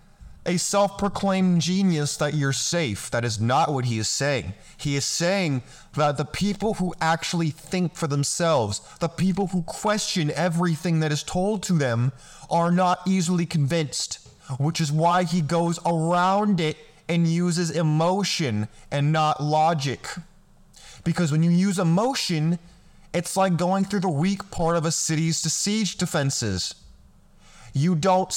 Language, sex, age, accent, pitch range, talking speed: English, male, 20-39, American, 145-180 Hz, 150 wpm